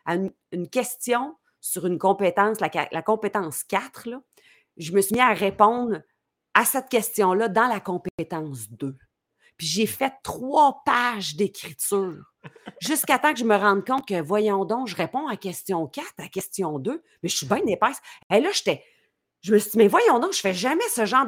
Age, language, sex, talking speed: 40-59, French, female, 195 wpm